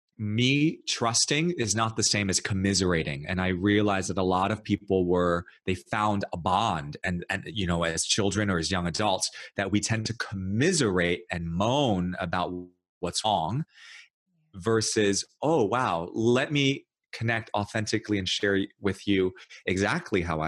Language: English